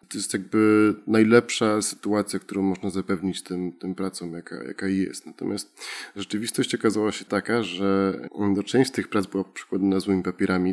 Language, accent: Polish, native